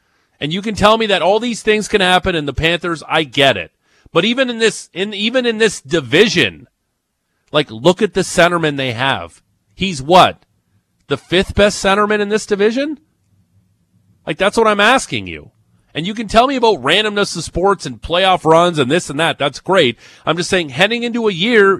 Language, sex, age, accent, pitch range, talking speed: English, male, 40-59, American, 145-200 Hz, 200 wpm